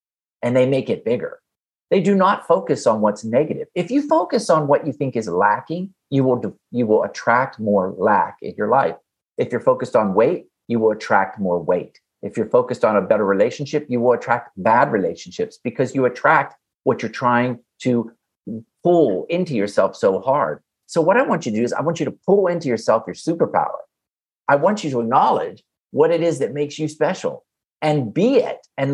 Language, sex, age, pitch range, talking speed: English, male, 50-69, 125-185 Hz, 205 wpm